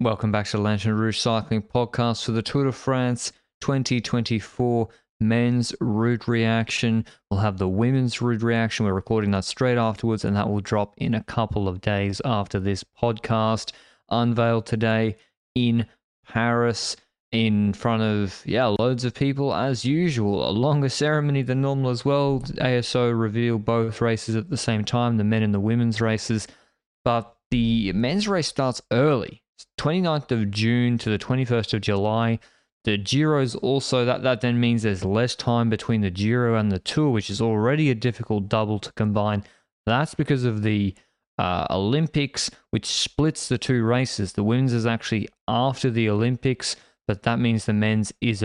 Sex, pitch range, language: male, 110-125 Hz, English